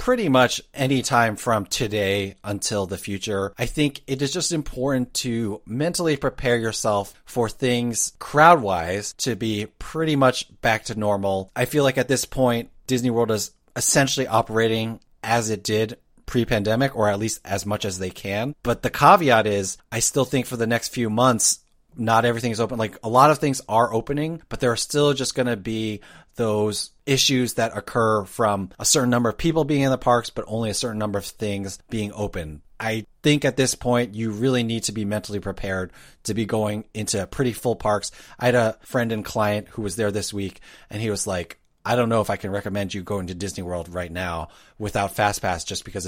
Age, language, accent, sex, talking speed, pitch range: 30-49, English, American, male, 205 wpm, 100-125 Hz